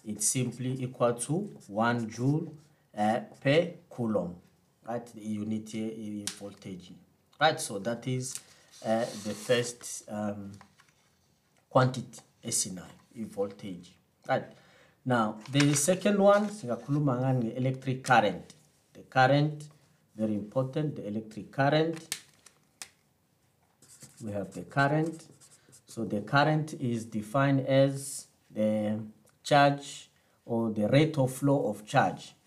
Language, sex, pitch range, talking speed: English, male, 110-145 Hz, 110 wpm